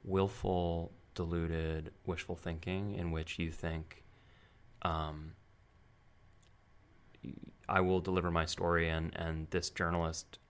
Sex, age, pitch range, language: male, 30-49, 85-100 Hz, English